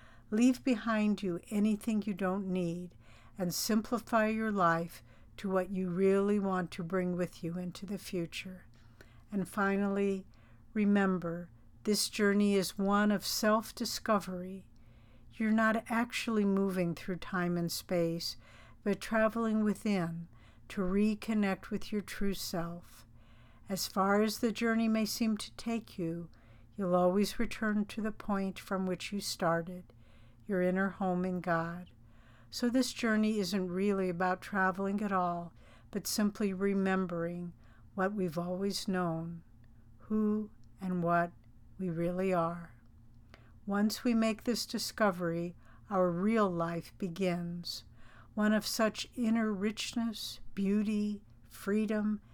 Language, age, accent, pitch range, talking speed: English, 60-79, American, 170-210 Hz, 130 wpm